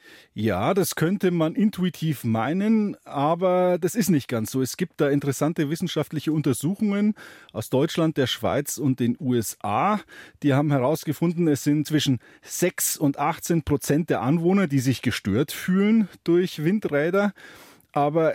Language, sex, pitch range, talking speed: German, male, 135-180 Hz, 145 wpm